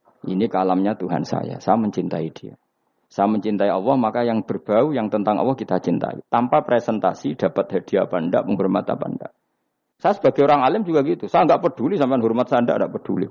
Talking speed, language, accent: 190 wpm, Indonesian, native